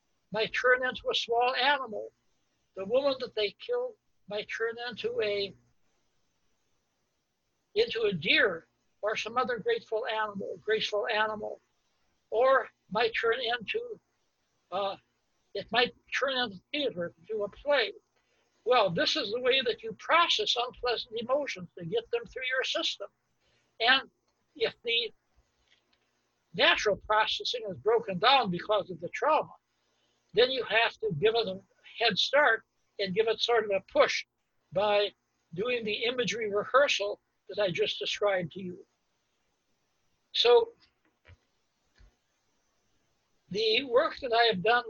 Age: 60-79